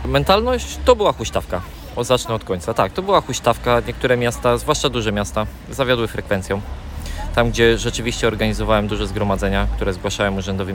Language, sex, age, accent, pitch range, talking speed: Polish, male, 20-39, native, 95-115 Hz, 150 wpm